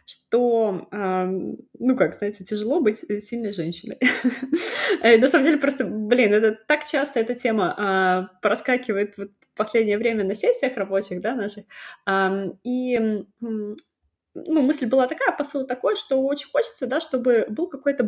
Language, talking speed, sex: Russian, 135 wpm, female